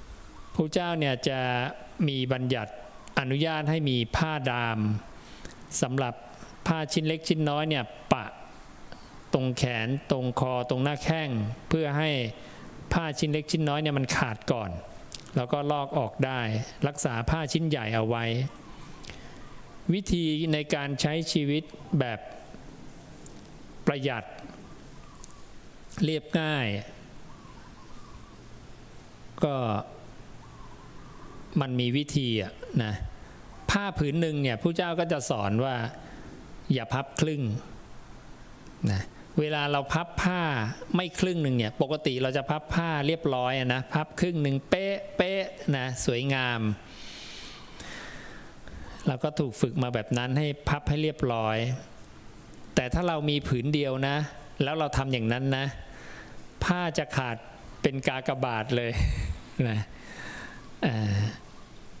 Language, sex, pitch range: English, male, 120-155 Hz